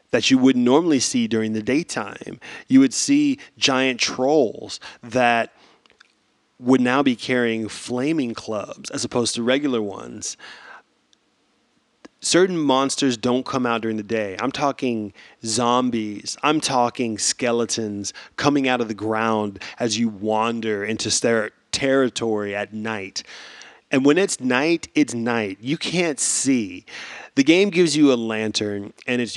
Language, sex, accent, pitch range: English, male, American, 115-150 Hz